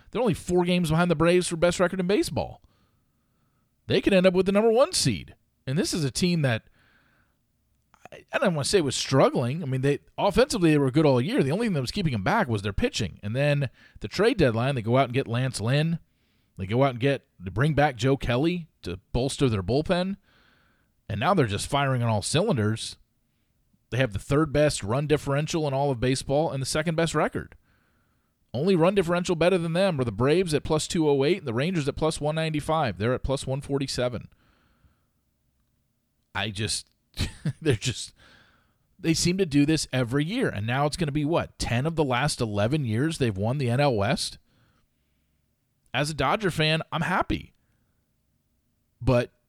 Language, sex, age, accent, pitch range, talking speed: English, male, 40-59, American, 120-160 Hz, 200 wpm